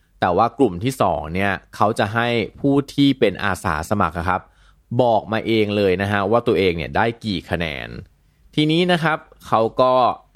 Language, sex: Thai, male